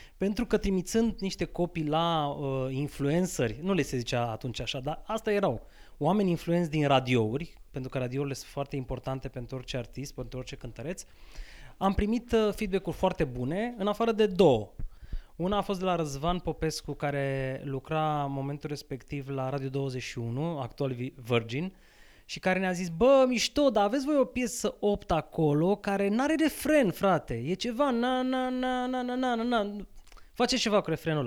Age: 20-39